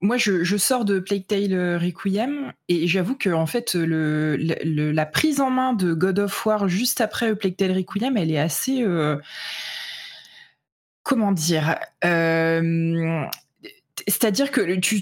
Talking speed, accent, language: 145 wpm, French, French